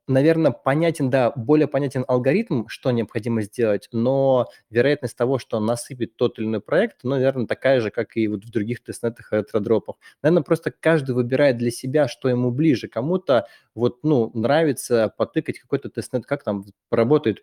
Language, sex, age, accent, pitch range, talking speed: Russian, male, 20-39, native, 110-135 Hz, 170 wpm